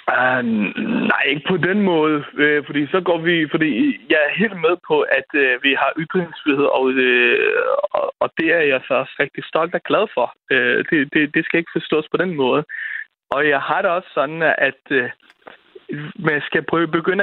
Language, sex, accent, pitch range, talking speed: Danish, male, native, 150-235 Hz, 200 wpm